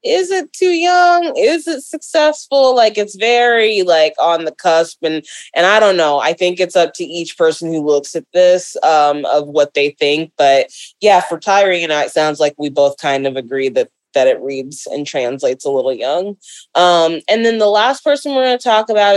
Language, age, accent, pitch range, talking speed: English, 20-39, American, 155-215 Hz, 215 wpm